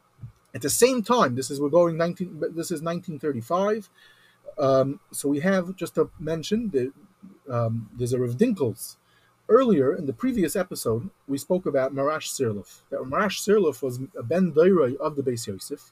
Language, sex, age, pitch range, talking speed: English, male, 30-49, 140-210 Hz, 170 wpm